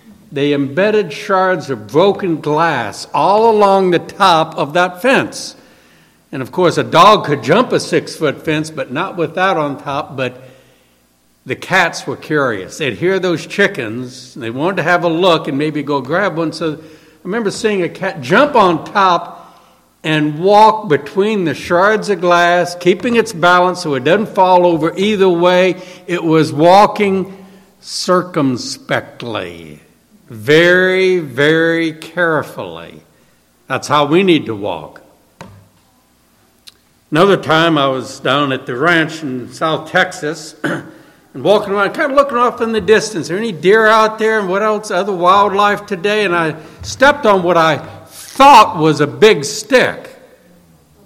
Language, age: English, 60-79